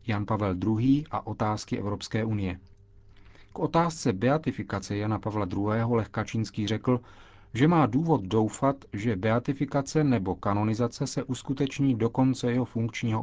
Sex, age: male, 40-59